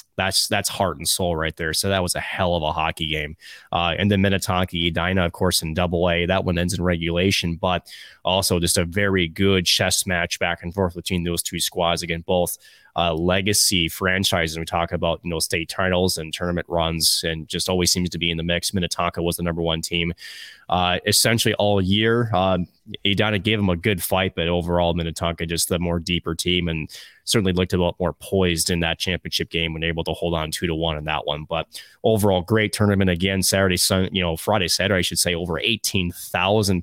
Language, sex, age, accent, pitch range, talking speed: English, male, 20-39, American, 85-100 Hz, 215 wpm